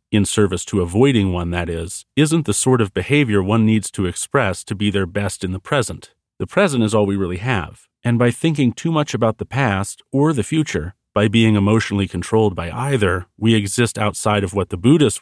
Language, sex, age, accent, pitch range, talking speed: English, male, 40-59, American, 100-120 Hz, 215 wpm